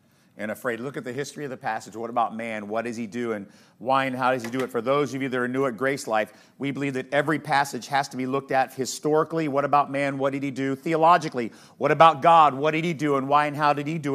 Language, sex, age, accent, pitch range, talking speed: English, male, 40-59, American, 130-165 Hz, 285 wpm